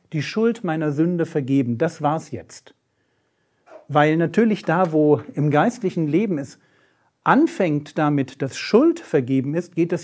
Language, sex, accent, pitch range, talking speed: German, male, German, 140-190 Hz, 145 wpm